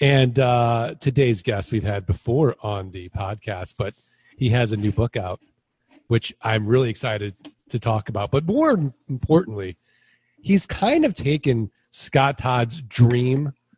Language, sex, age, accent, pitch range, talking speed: English, male, 40-59, American, 115-150 Hz, 150 wpm